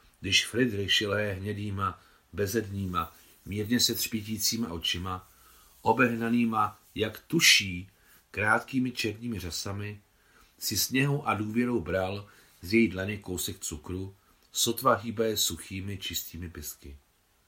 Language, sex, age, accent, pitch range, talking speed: Czech, male, 40-59, native, 85-110 Hz, 105 wpm